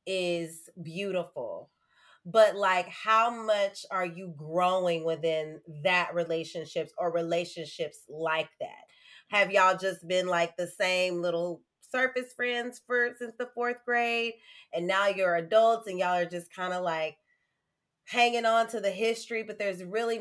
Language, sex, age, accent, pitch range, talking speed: English, female, 30-49, American, 160-210 Hz, 150 wpm